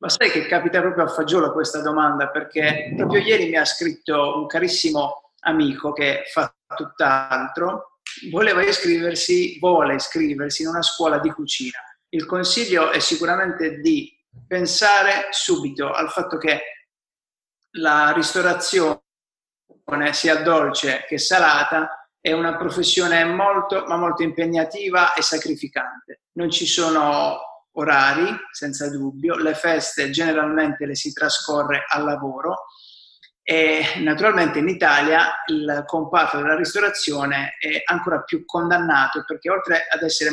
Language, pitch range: Italian, 150-190 Hz